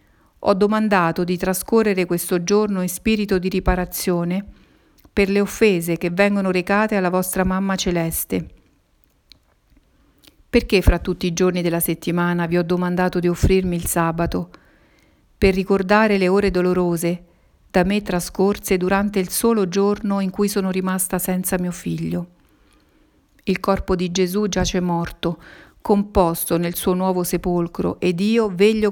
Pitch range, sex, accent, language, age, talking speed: 175-200 Hz, female, native, Italian, 50-69, 140 wpm